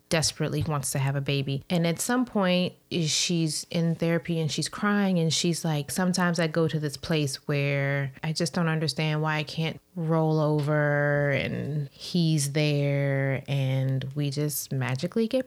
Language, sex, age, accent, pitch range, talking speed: English, female, 20-39, American, 155-195 Hz, 165 wpm